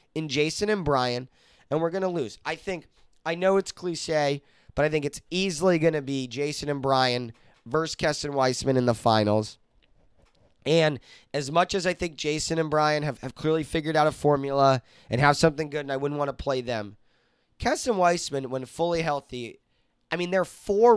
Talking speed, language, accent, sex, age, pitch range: 195 wpm, English, American, male, 30-49, 135-170 Hz